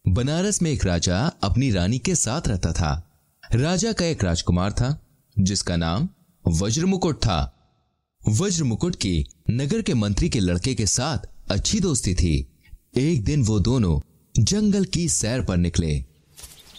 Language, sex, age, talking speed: Hindi, male, 30-49, 145 wpm